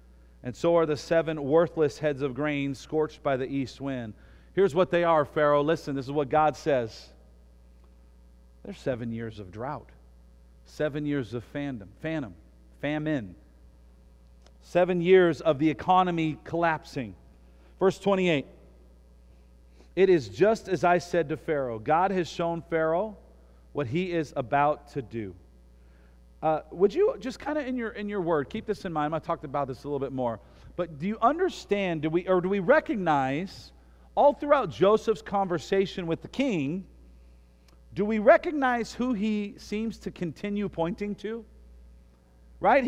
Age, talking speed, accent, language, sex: 40-59, 155 wpm, American, English, male